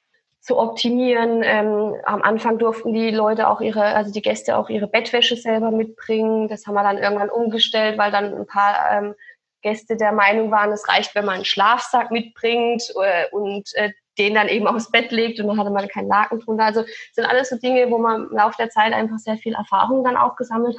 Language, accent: German, German